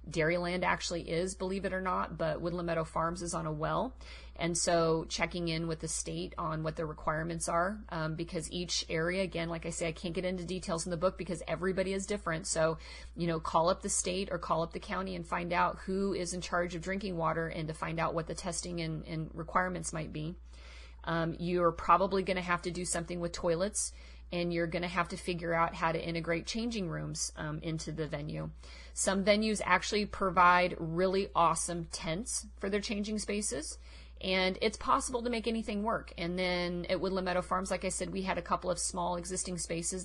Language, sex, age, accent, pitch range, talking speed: English, female, 30-49, American, 160-185 Hz, 215 wpm